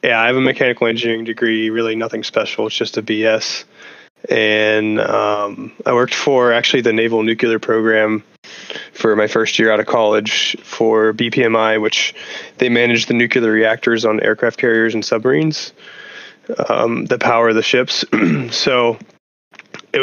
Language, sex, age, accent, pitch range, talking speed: English, male, 20-39, American, 110-115 Hz, 155 wpm